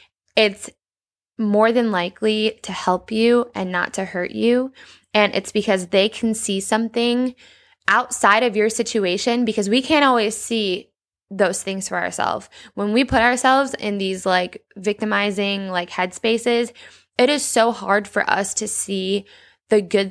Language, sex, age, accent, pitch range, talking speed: English, female, 10-29, American, 195-240 Hz, 155 wpm